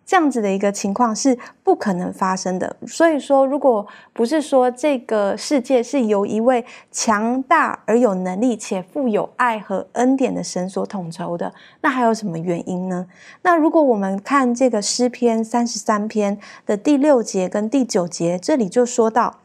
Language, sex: Chinese, female